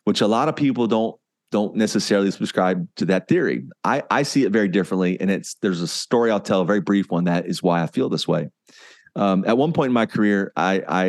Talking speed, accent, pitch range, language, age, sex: 245 wpm, American, 95-125 Hz, English, 30-49, male